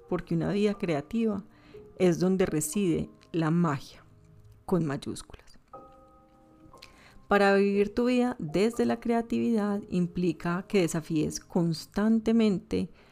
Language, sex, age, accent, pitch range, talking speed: Spanish, female, 30-49, Colombian, 155-205 Hz, 100 wpm